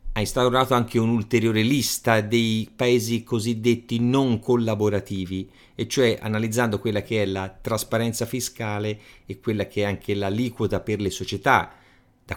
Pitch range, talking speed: 95-125 Hz, 140 wpm